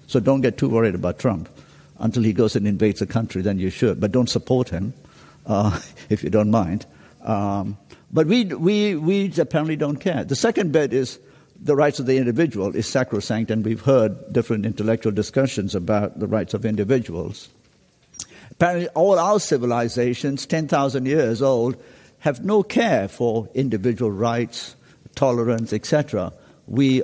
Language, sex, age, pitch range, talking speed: German, male, 60-79, 110-135 Hz, 160 wpm